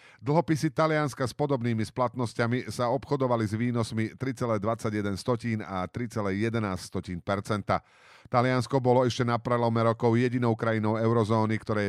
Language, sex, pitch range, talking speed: Slovak, male, 105-130 Hz, 110 wpm